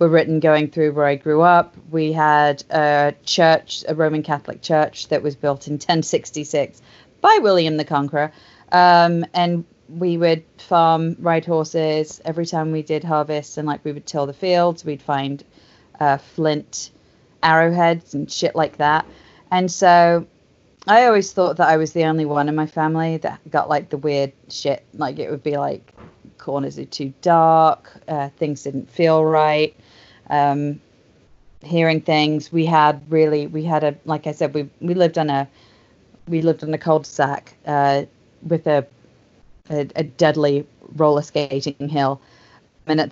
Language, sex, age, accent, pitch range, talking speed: English, female, 30-49, British, 145-165 Hz, 165 wpm